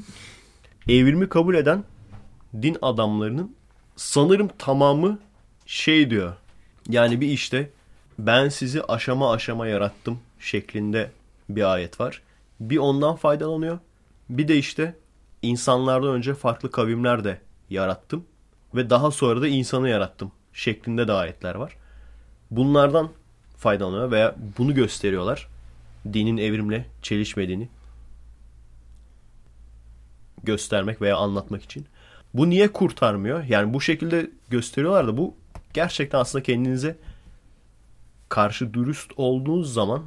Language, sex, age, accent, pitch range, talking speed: Turkish, male, 30-49, native, 105-150 Hz, 105 wpm